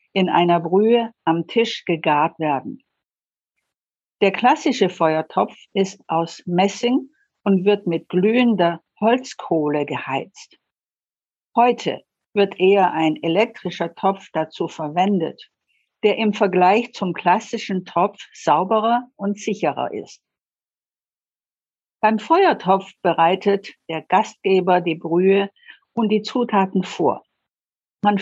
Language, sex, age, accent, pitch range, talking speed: German, female, 60-79, German, 170-215 Hz, 105 wpm